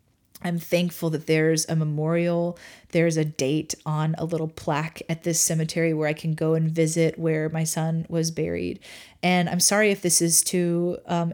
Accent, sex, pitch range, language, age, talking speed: American, female, 160-180 Hz, English, 30-49, 185 wpm